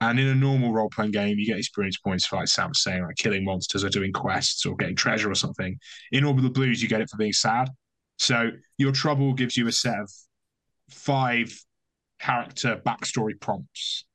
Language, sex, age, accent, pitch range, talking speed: English, male, 20-39, British, 110-135 Hz, 210 wpm